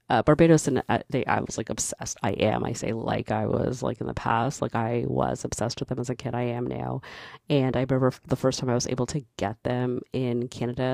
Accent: American